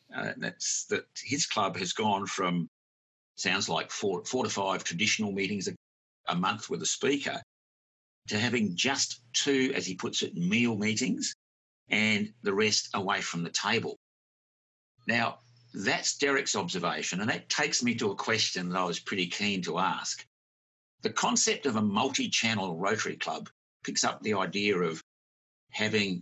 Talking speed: 160 wpm